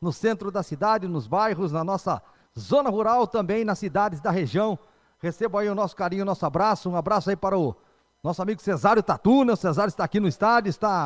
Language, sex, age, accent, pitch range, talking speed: Portuguese, male, 40-59, Brazilian, 180-225 Hz, 210 wpm